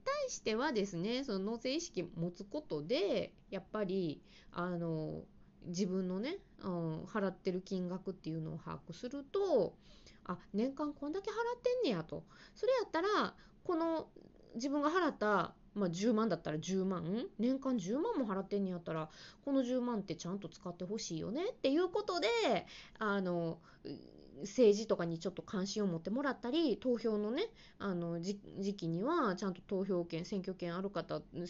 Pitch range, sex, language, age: 180-295 Hz, female, Japanese, 20-39